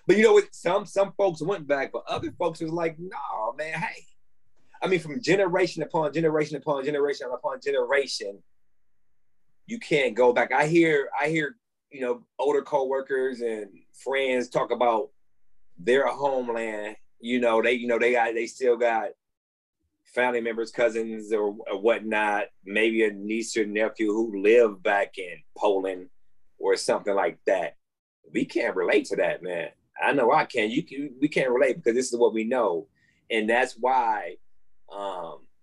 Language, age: English, 30-49